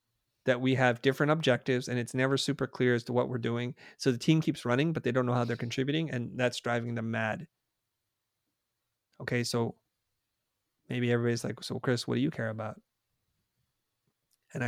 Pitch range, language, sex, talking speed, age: 120-140 Hz, English, male, 185 wpm, 30-49